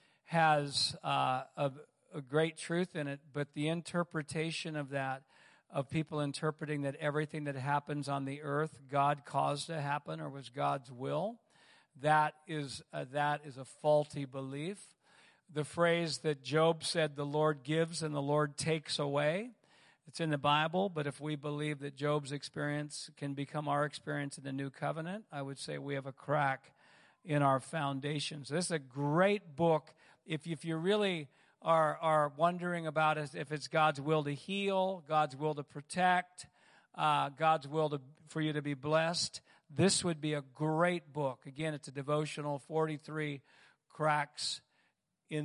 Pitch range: 145-160 Hz